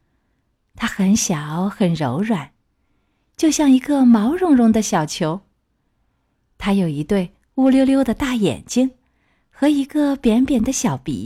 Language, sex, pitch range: Chinese, female, 185-245 Hz